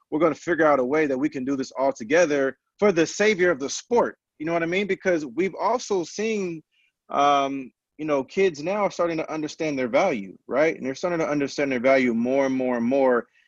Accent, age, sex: American, 30-49, male